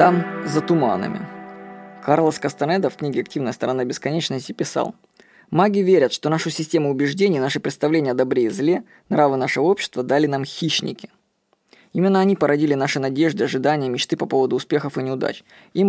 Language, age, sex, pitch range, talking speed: Russian, 20-39, female, 150-190 Hz, 160 wpm